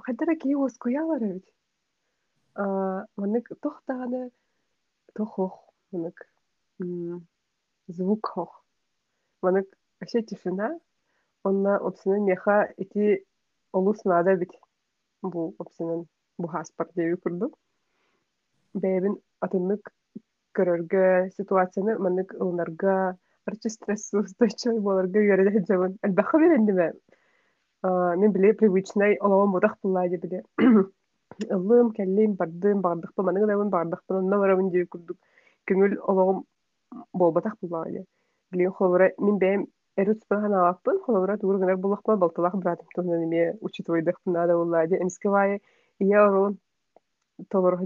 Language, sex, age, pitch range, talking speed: Russian, female, 30-49, 180-205 Hz, 55 wpm